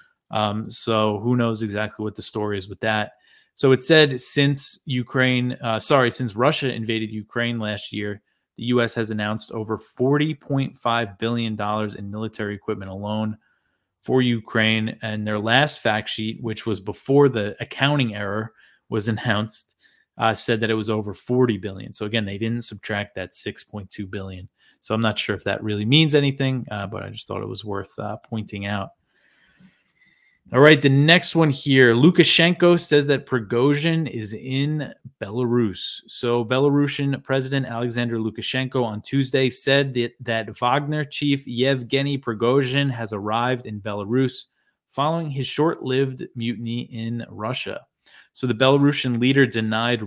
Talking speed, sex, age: 155 wpm, male, 20-39